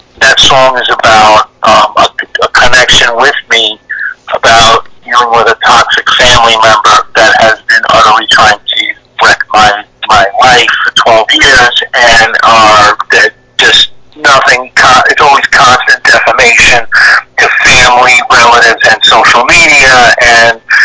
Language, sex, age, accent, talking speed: English, male, 40-59, American, 135 wpm